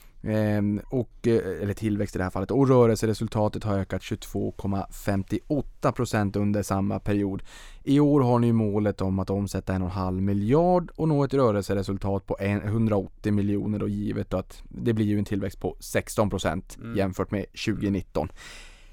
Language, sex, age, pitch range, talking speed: Swedish, male, 20-39, 100-125 Hz, 145 wpm